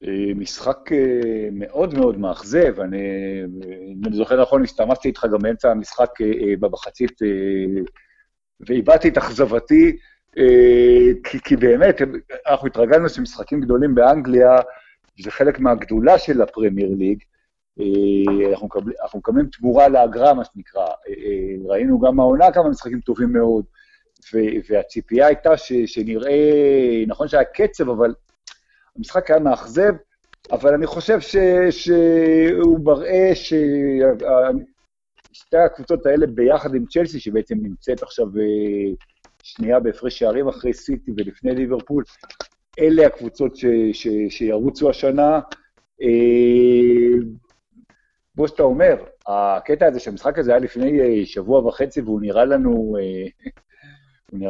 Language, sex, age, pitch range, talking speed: Hebrew, male, 50-69, 110-175 Hz, 105 wpm